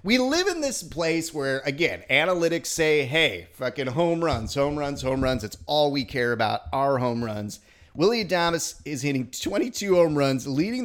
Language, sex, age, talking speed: English, male, 30-49, 185 wpm